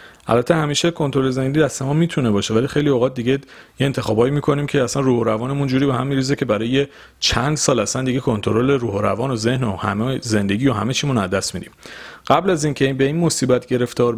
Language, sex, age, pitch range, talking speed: Persian, male, 40-59, 110-150 Hz, 210 wpm